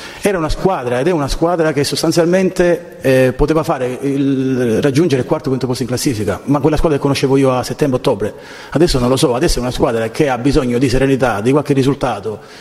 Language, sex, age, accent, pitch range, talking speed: Italian, male, 30-49, native, 115-145 Hz, 215 wpm